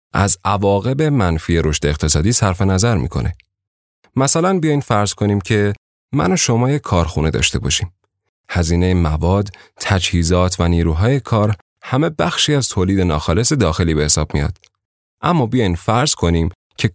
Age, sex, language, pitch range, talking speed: 30-49, male, Persian, 85-115 Hz, 145 wpm